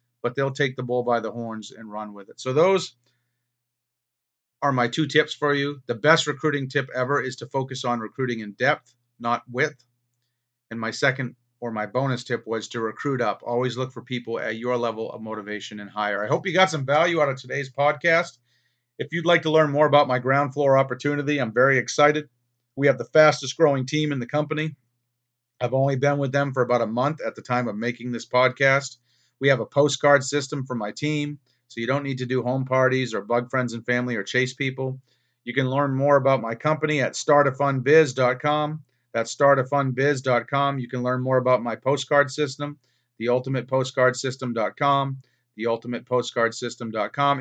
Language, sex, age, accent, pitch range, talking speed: English, male, 40-59, American, 120-145 Hz, 190 wpm